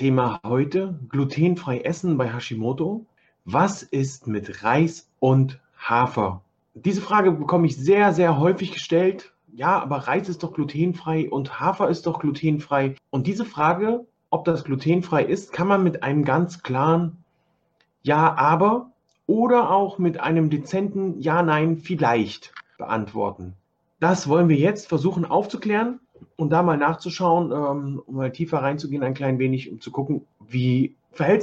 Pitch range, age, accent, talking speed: 125-175 Hz, 40-59, German, 145 wpm